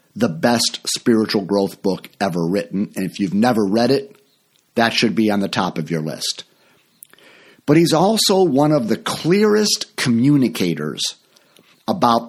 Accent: American